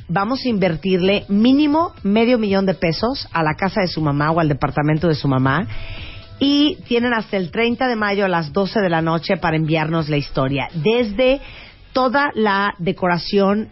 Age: 40-59